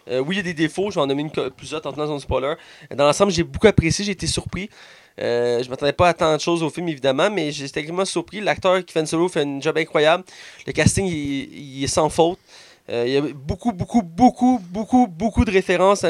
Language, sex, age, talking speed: French, male, 20-39, 260 wpm